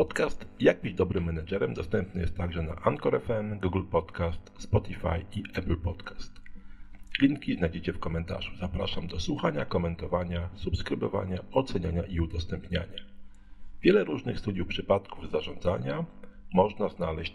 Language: Polish